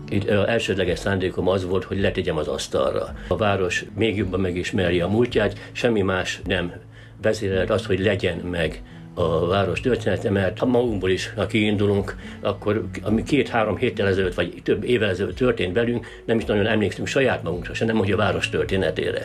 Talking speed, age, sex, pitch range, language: 175 wpm, 60-79, male, 90-110 Hz, Hungarian